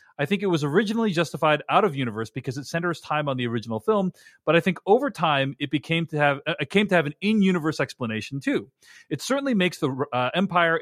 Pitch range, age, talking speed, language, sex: 130-175 Hz, 30-49, 220 wpm, English, male